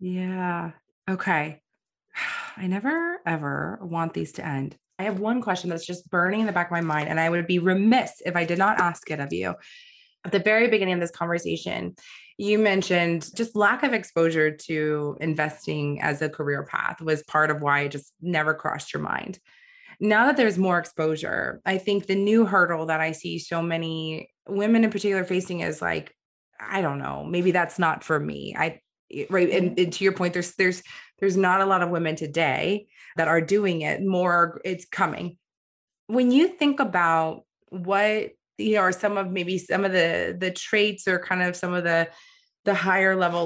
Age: 20-39